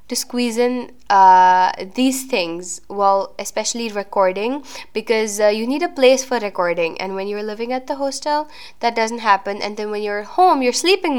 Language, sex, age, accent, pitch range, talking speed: English, female, 10-29, Indian, 210-295 Hz, 195 wpm